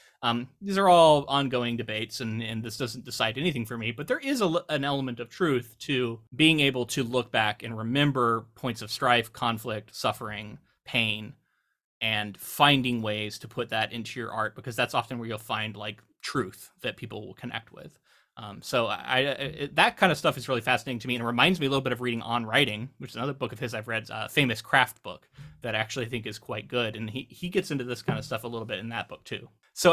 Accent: American